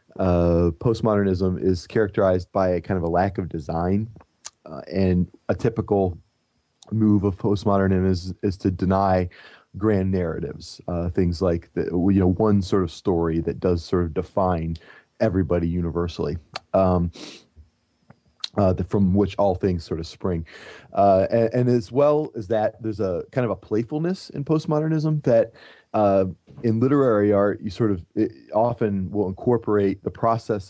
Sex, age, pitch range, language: male, 30-49, 90-105 Hz, English